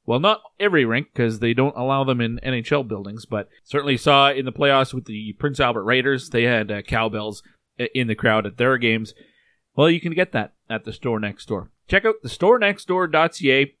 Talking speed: 210 wpm